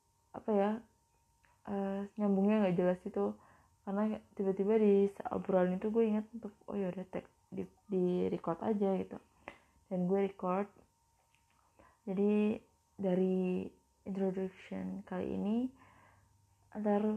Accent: native